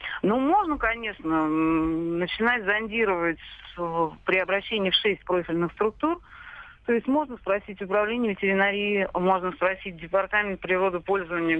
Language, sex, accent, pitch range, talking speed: Russian, female, native, 170-215 Hz, 110 wpm